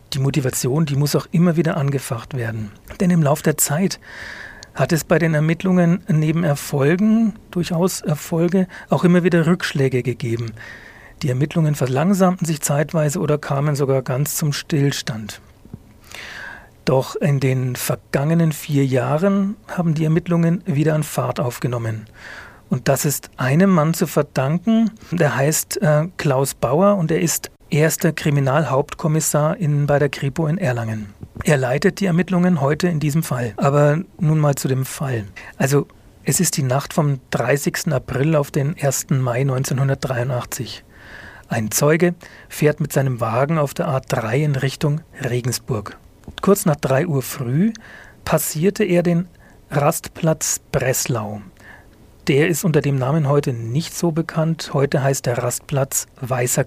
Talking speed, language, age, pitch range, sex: 145 wpm, German, 40-59, 130-165 Hz, male